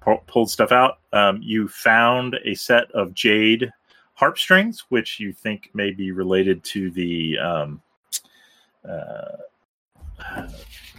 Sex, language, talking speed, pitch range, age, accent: male, English, 120 wpm, 90-120 Hz, 30-49, American